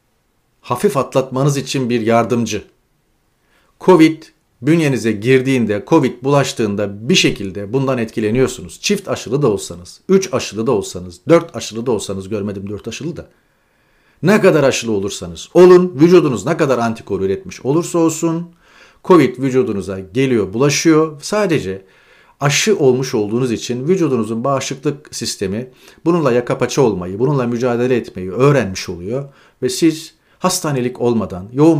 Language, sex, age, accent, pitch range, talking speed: Turkish, male, 40-59, native, 115-160 Hz, 125 wpm